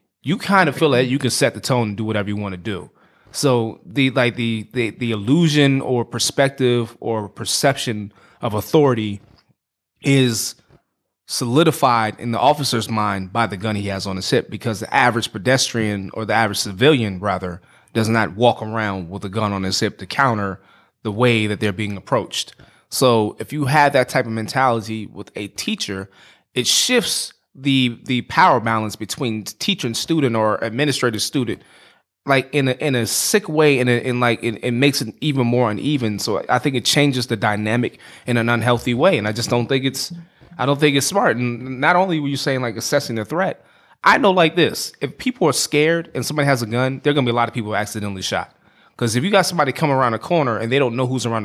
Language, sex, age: English, male, 20-39